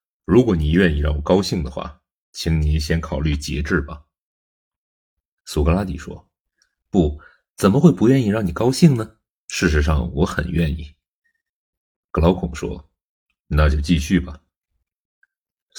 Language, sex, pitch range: Chinese, male, 75-95 Hz